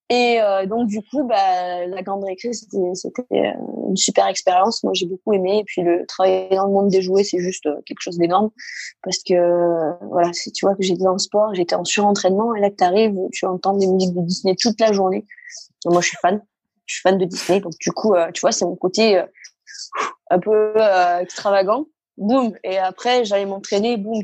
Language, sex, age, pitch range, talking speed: French, female, 20-39, 180-220 Hz, 225 wpm